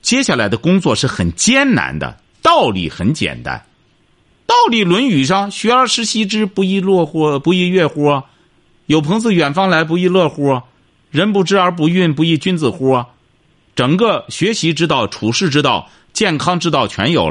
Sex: male